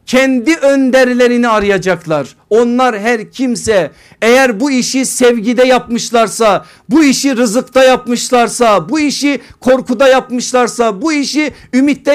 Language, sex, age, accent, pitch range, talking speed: Turkish, male, 50-69, native, 205-260 Hz, 110 wpm